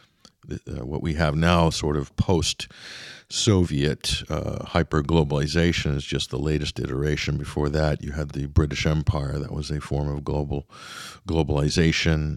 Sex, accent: male, American